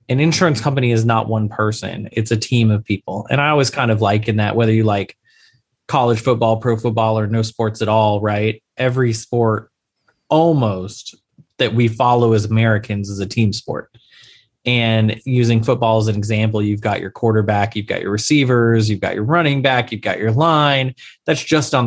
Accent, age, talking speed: American, 20-39, 195 wpm